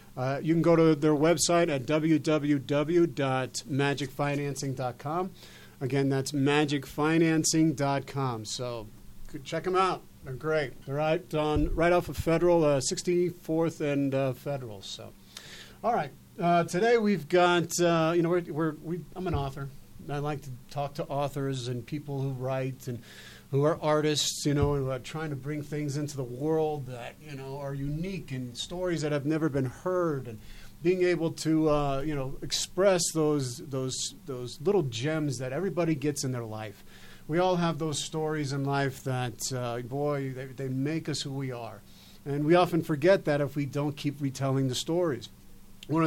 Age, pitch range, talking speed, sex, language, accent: 40-59, 135-160 Hz, 175 wpm, male, English, American